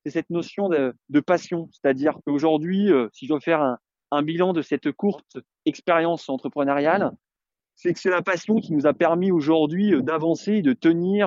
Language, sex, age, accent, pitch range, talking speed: French, male, 20-39, French, 140-190 Hz, 180 wpm